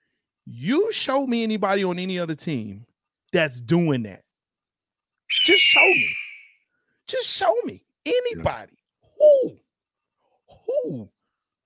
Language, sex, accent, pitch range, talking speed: English, male, American, 150-255 Hz, 105 wpm